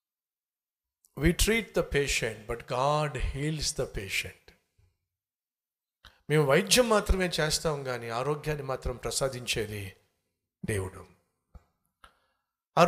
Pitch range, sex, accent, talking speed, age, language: 130-195 Hz, male, native, 90 wpm, 50-69, Telugu